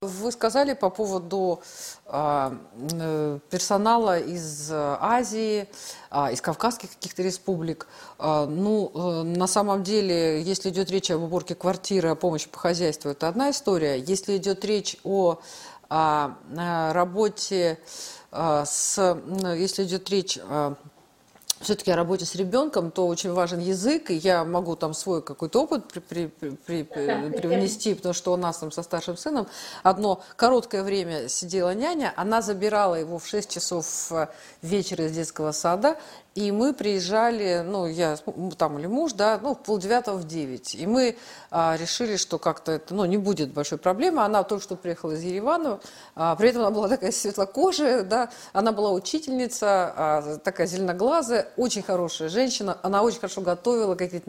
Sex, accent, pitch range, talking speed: female, native, 165-215 Hz, 145 wpm